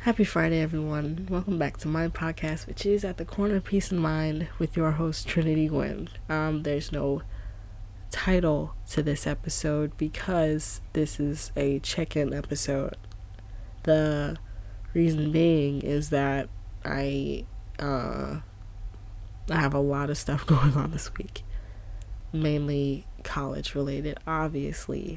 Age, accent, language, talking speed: 20-39, American, English, 135 wpm